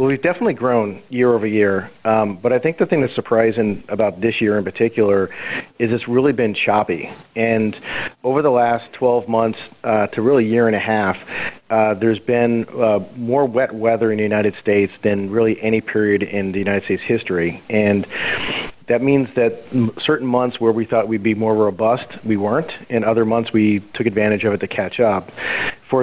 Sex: male